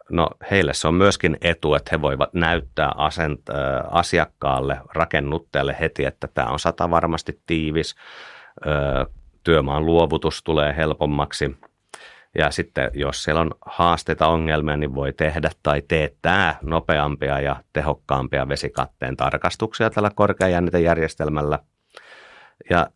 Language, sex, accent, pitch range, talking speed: Finnish, male, native, 70-80 Hz, 110 wpm